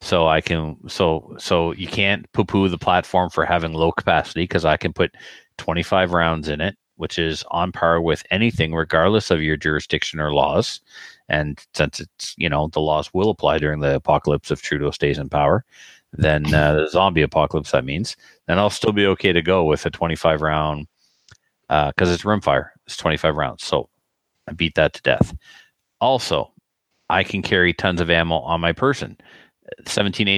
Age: 40-59